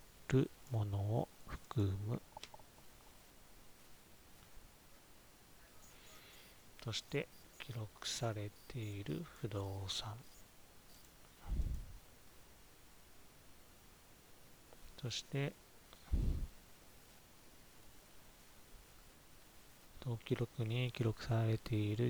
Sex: male